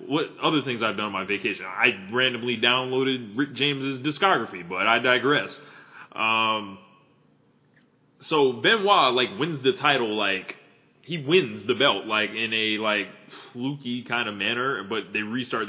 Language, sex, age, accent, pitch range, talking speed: English, male, 20-39, American, 95-115 Hz, 155 wpm